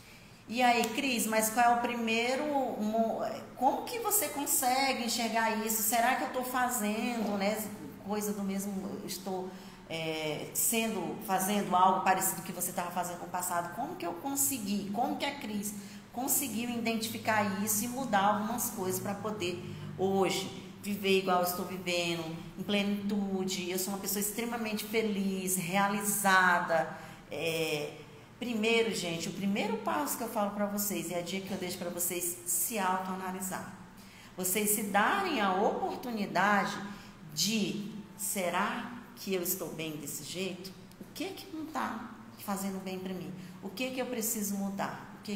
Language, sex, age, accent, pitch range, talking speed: Portuguese, female, 40-59, Brazilian, 185-225 Hz, 160 wpm